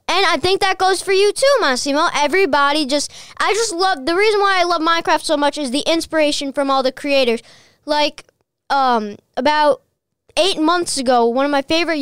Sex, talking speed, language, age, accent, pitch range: female, 195 wpm, English, 10-29, American, 265-335 Hz